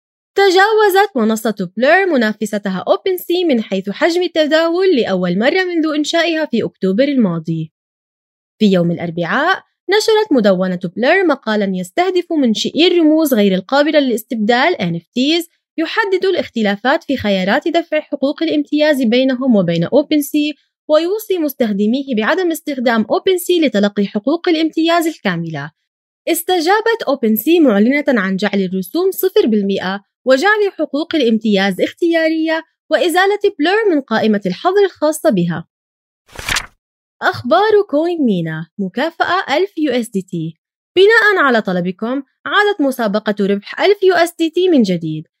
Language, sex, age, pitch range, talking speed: Arabic, female, 20-39, 205-340 Hz, 125 wpm